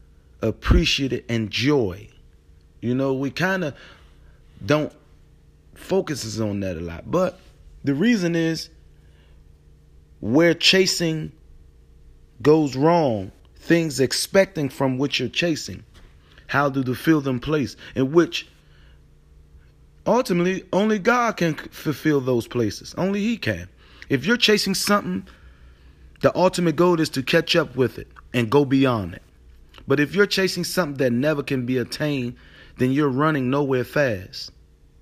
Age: 30-49